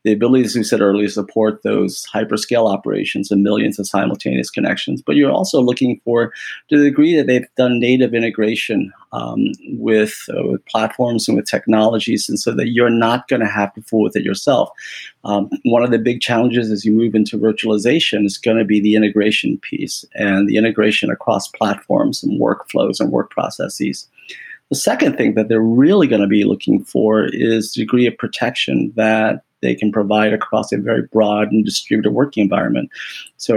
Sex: male